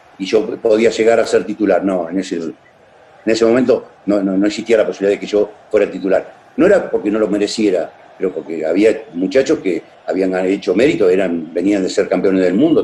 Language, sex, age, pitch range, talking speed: Spanish, male, 50-69, 100-145 Hz, 215 wpm